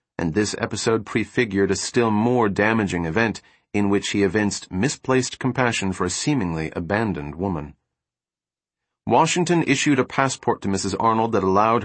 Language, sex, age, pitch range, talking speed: English, male, 40-59, 95-125 Hz, 145 wpm